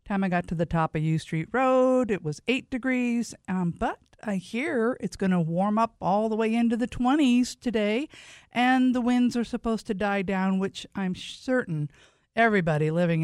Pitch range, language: 175-240 Hz, English